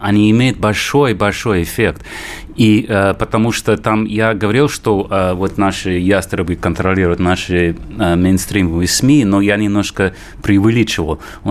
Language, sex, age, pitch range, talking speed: Russian, male, 30-49, 90-115 Hz, 135 wpm